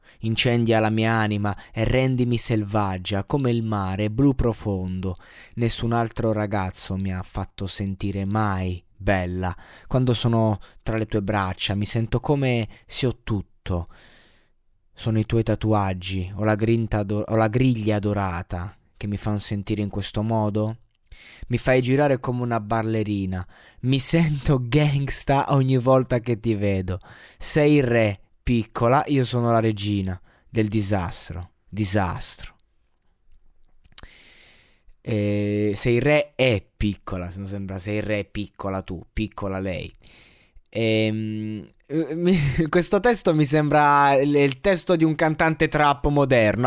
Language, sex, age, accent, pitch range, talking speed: Italian, male, 20-39, native, 105-130 Hz, 135 wpm